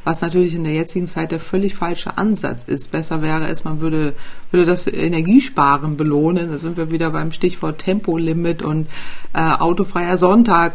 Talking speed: 175 wpm